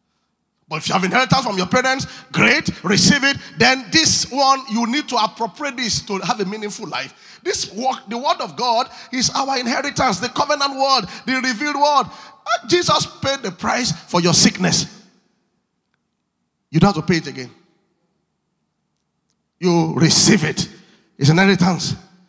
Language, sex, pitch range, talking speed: English, male, 165-240 Hz, 150 wpm